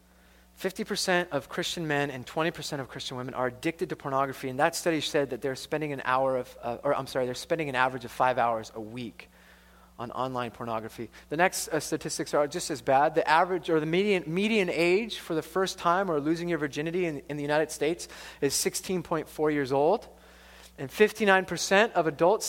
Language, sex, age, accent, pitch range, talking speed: English, male, 30-49, American, 135-185 Hz, 200 wpm